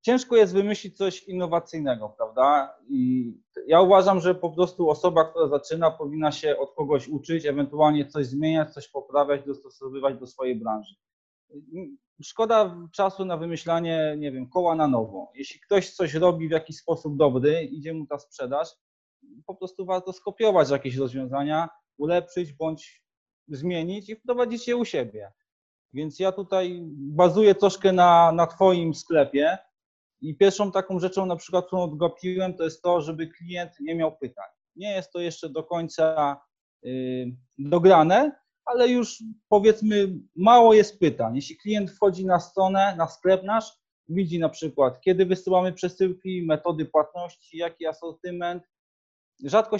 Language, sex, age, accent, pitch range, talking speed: Polish, male, 20-39, native, 155-195 Hz, 145 wpm